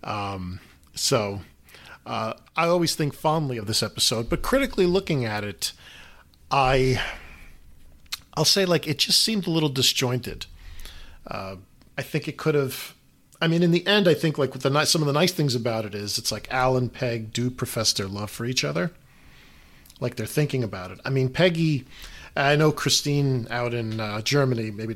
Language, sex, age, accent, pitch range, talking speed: English, male, 40-59, American, 105-145 Hz, 190 wpm